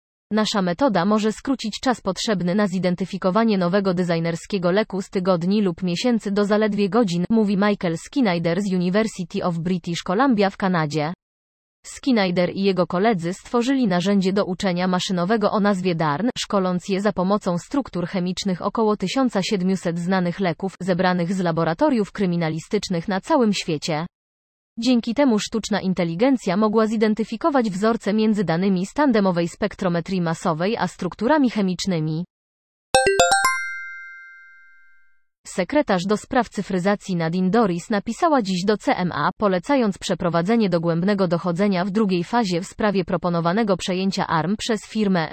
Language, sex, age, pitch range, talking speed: Polish, female, 20-39, 175-215 Hz, 125 wpm